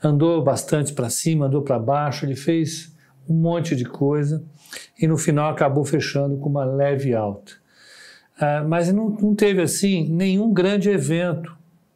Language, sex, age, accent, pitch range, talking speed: Portuguese, male, 60-79, Brazilian, 135-165 Hz, 150 wpm